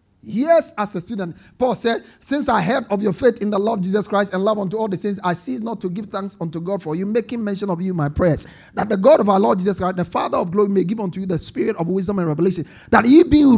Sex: male